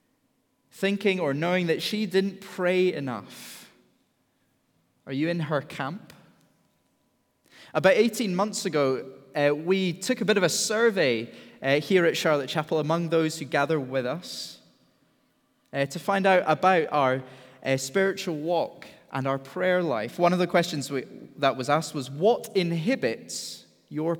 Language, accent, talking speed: English, British, 150 wpm